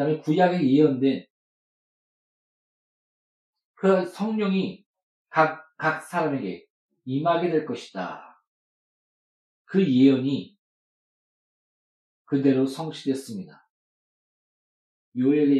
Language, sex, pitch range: Korean, male, 130-170 Hz